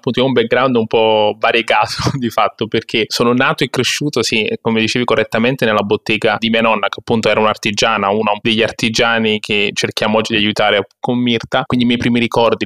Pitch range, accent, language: 105-120 Hz, native, Italian